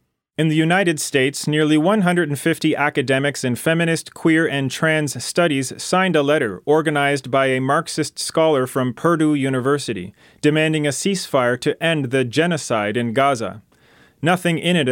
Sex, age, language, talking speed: male, 30-49, English, 145 wpm